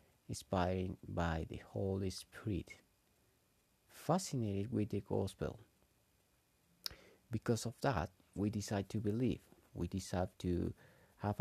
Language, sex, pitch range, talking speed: English, male, 90-120 Hz, 105 wpm